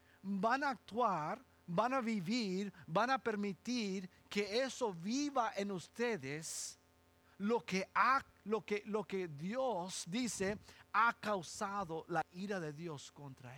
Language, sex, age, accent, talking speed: English, male, 50-69, Mexican, 135 wpm